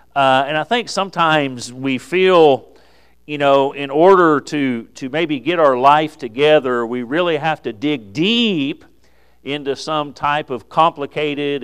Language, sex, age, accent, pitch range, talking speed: English, male, 50-69, American, 125-160 Hz, 150 wpm